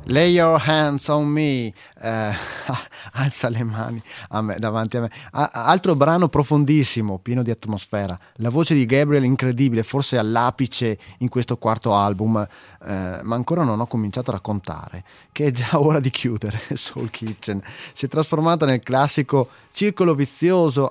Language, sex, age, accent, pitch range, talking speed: English, male, 30-49, Italian, 110-150 Hz, 160 wpm